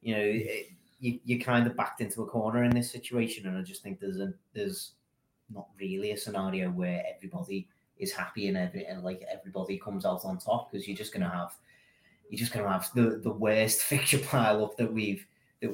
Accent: British